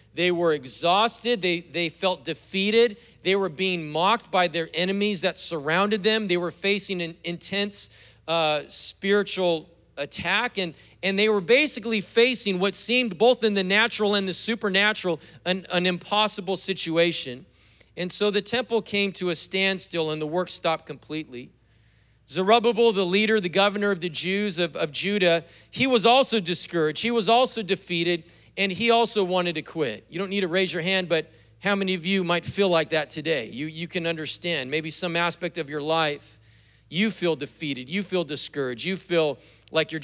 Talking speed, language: 180 wpm, English